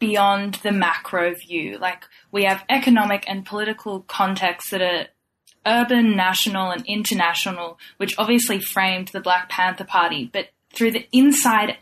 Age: 10-29